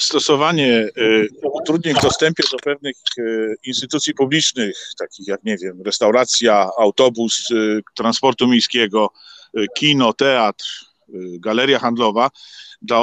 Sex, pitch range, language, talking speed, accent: male, 115-140 Hz, Polish, 95 wpm, native